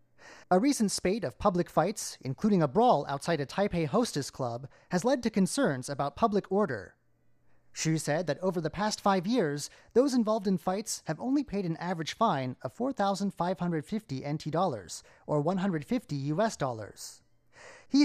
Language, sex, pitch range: English, male, 135-215 Hz